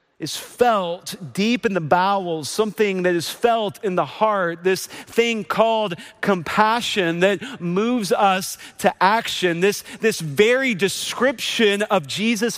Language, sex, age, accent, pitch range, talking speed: English, male, 40-59, American, 185-240 Hz, 135 wpm